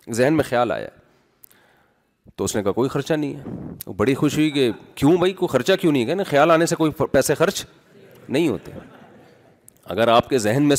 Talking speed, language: 200 wpm, Urdu